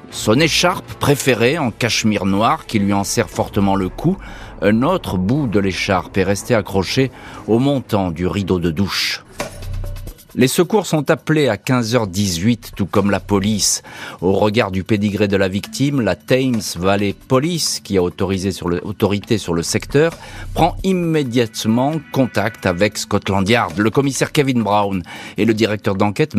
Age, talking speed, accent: 40-59, 160 wpm, French